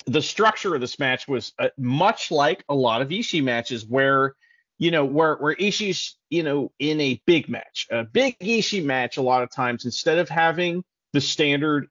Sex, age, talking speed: male, 40-59, 195 wpm